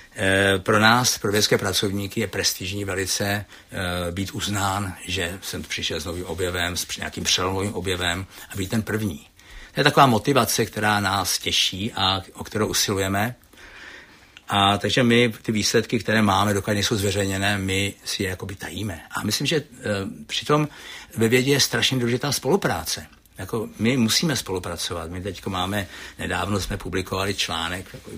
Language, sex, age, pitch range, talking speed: Czech, male, 60-79, 95-110 Hz, 155 wpm